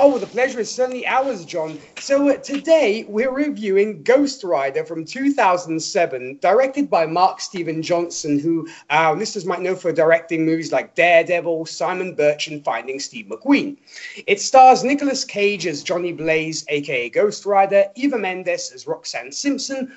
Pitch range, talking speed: 165-265 Hz, 160 wpm